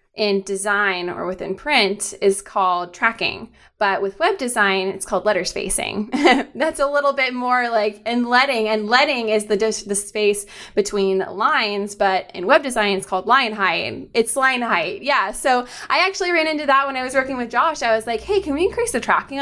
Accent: American